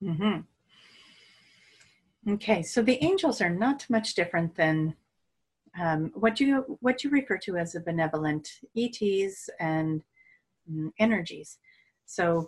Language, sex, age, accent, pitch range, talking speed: English, female, 40-59, American, 155-195 Hz, 130 wpm